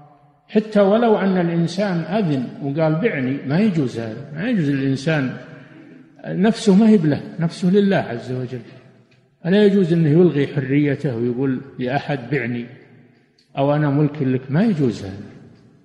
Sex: male